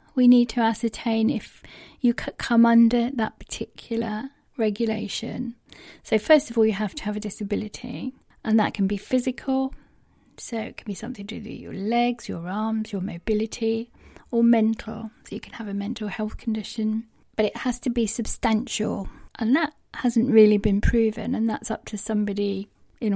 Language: English